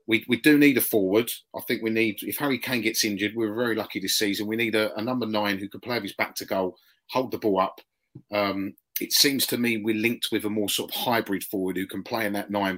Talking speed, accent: 270 wpm, British